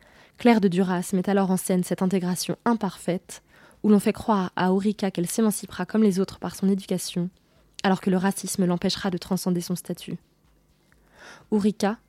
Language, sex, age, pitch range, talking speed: French, female, 20-39, 180-205 Hz, 170 wpm